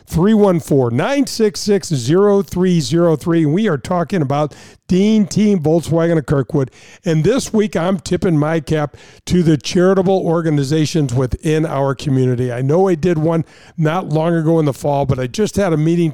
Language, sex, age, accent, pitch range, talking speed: English, male, 50-69, American, 155-190 Hz, 155 wpm